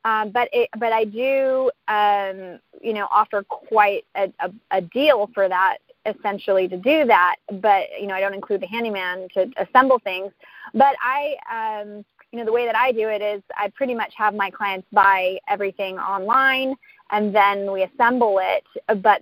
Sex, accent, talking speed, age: female, American, 180 wpm, 30-49